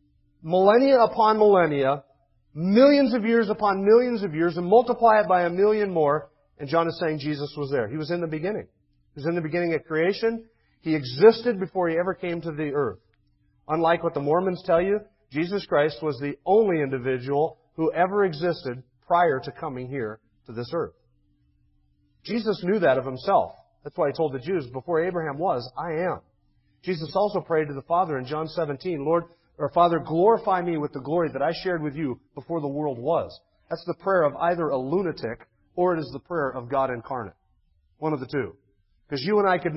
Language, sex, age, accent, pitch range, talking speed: English, male, 40-59, American, 140-180 Hz, 200 wpm